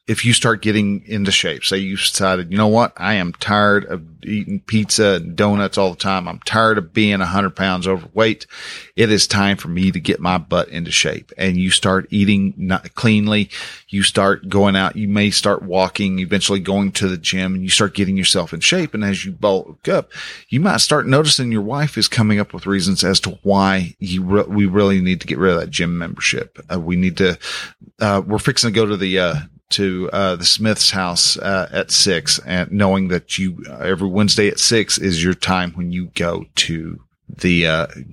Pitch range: 95-105 Hz